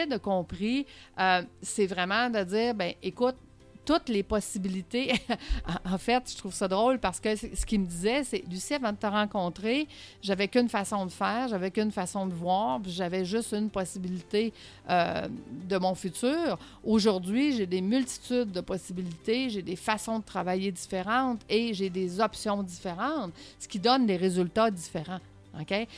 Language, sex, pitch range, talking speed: French, female, 180-225 Hz, 170 wpm